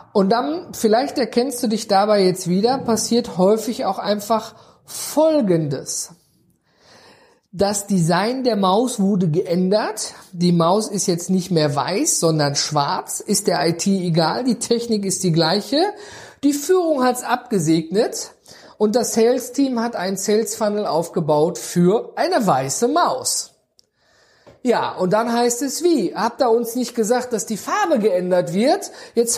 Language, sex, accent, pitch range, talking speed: German, male, German, 185-255 Hz, 150 wpm